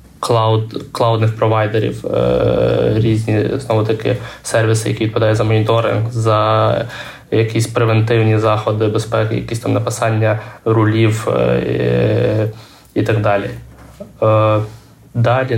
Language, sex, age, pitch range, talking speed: Ukrainian, male, 20-39, 105-115 Hz, 95 wpm